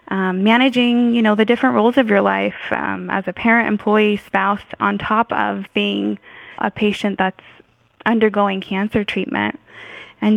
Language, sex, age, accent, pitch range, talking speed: English, female, 10-29, American, 195-225 Hz, 155 wpm